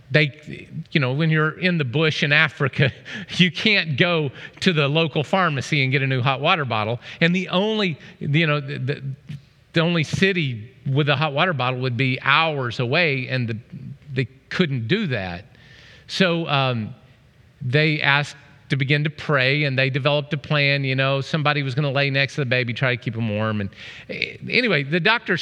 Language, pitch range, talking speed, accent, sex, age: English, 130-170 Hz, 195 wpm, American, male, 40-59